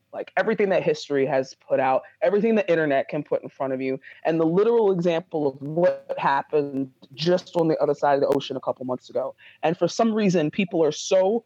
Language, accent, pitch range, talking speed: English, American, 170-260 Hz, 220 wpm